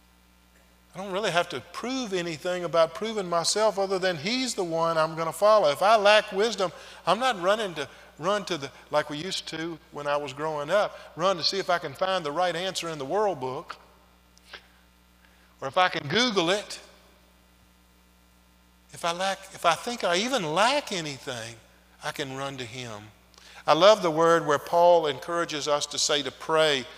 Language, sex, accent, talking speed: English, male, American, 190 wpm